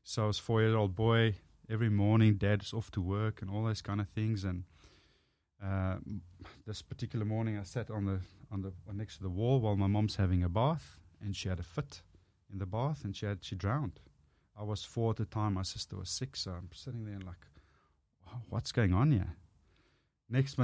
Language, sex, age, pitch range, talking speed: English, male, 30-49, 90-110 Hz, 210 wpm